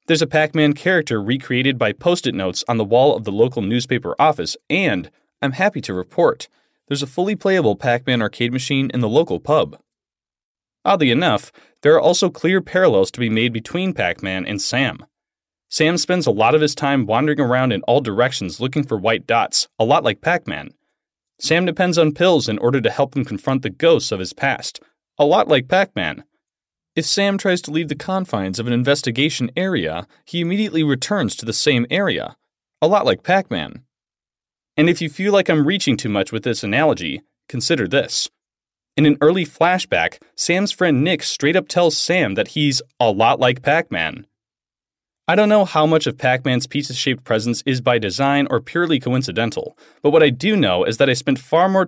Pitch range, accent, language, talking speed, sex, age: 125-165 Hz, American, English, 190 wpm, male, 30-49